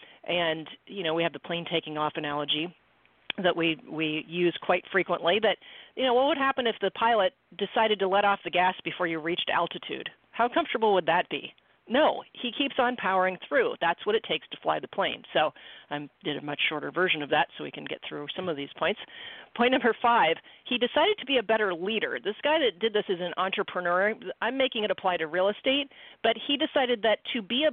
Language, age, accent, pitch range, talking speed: English, 40-59, American, 175-245 Hz, 225 wpm